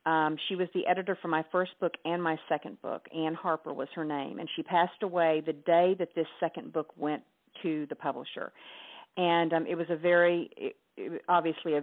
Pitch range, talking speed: 160-185 Hz, 215 wpm